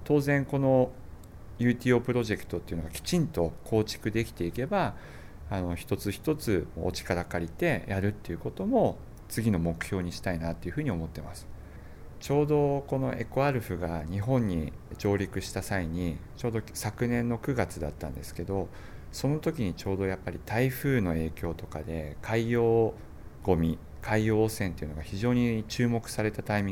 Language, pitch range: Japanese, 85-120 Hz